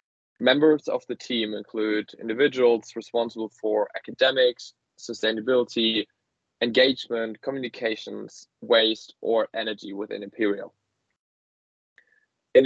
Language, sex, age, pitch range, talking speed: English, male, 20-39, 105-125 Hz, 85 wpm